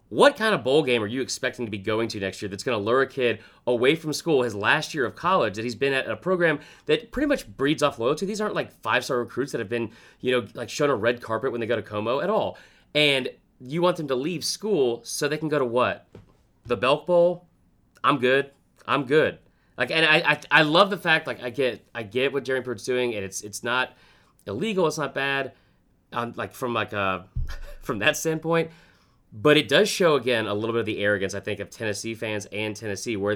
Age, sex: 30-49, male